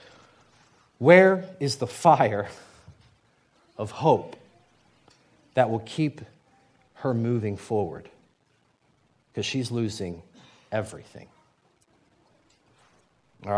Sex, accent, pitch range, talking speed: male, American, 110-135 Hz, 75 wpm